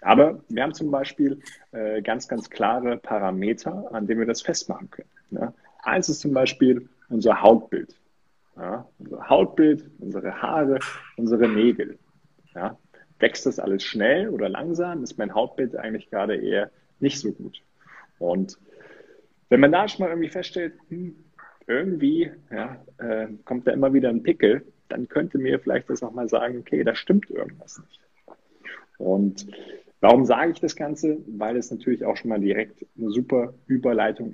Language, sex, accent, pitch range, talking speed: German, male, German, 105-145 Hz, 155 wpm